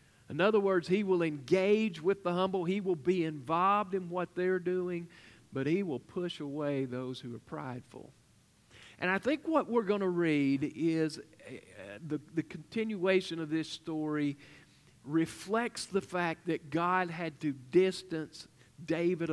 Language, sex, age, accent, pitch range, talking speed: English, male, 50-69, American, 135-175 Hz, 160 wpm